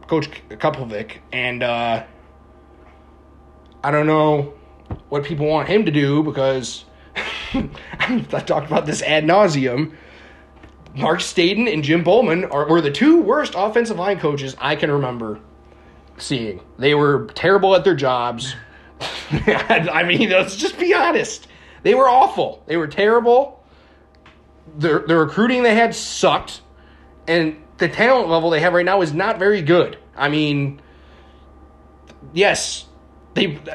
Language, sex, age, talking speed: English, male, 30-49, 135 wpm